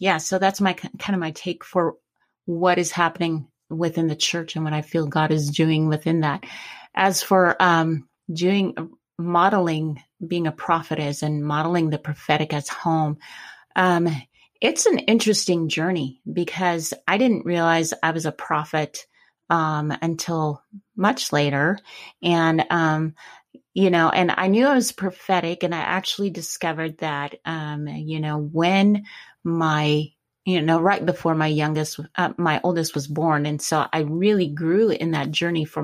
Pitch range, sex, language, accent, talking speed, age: 155-185 Hz, female, English, American, 160 wpm, 30-49